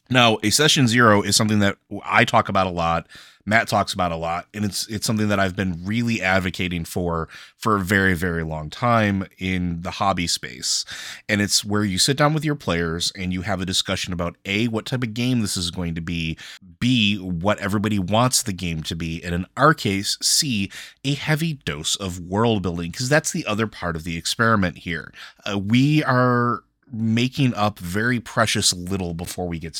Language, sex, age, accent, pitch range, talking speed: English, male, 20-39, American, 90-115 Hz, 205 wpm